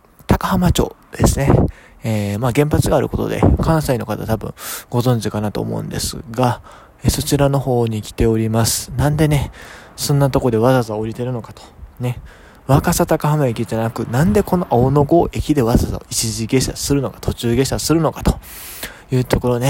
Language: Japanese